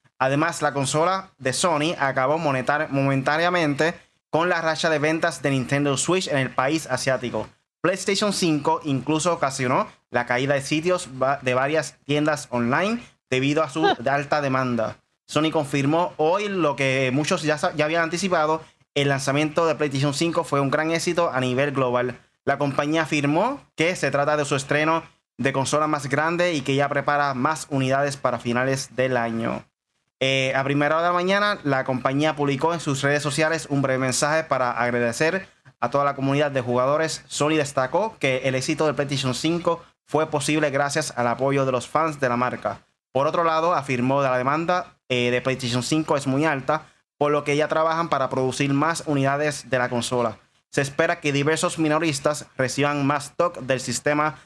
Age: 20-39